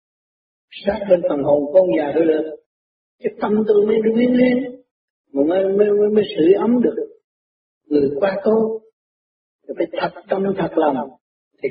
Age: 50-69